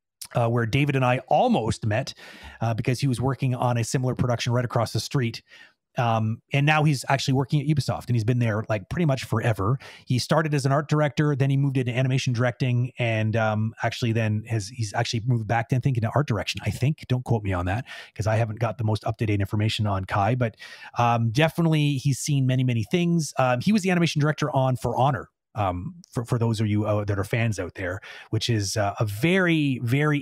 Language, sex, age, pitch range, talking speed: English, male, 30-49, 110-135 Hz, 225 wpm